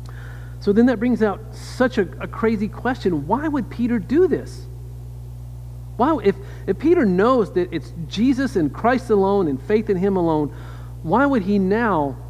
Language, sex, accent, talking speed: English, male, American, 170 wpm